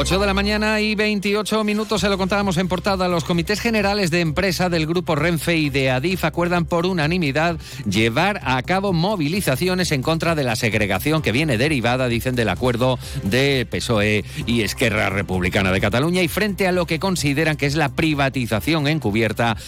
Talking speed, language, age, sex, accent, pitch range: 180 wpm, Spanish, 40-59, male, Spanish, 110-160 Hz